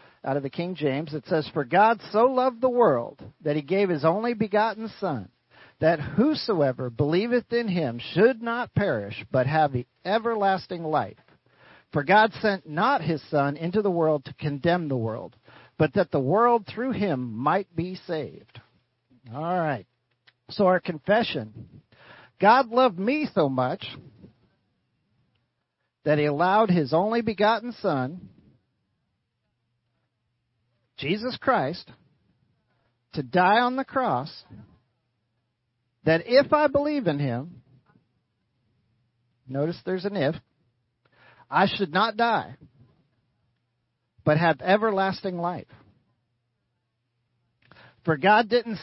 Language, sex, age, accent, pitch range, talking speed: English, male, 50-69, American, 120-195 Hz, 125 wpm